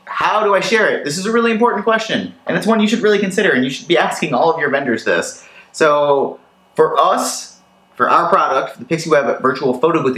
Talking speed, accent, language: 235 wpm, American, English